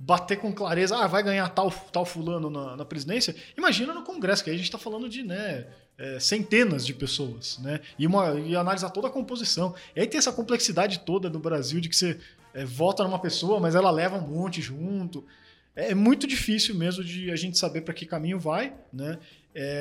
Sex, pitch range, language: male, 160-215 Hz, Portuguese